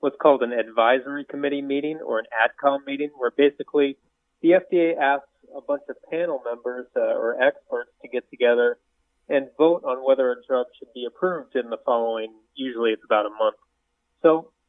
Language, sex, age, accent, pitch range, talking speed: English, male, 30-49, American, 125-165 Hz, 180 wpm